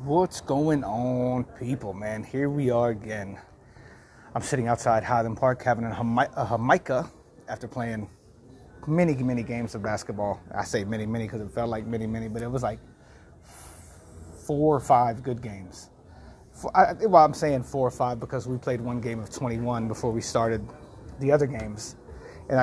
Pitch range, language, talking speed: 110-140 Hz, English, 170 wpm